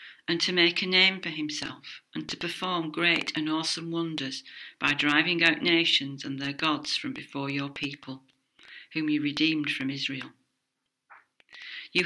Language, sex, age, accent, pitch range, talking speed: English, female, 50-69, British, 145-185 Hz, 155 wpm